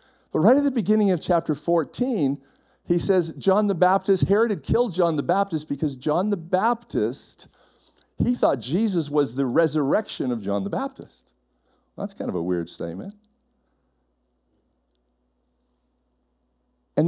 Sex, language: male, English